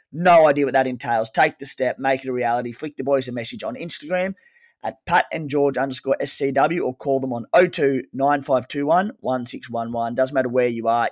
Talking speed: 165 wpm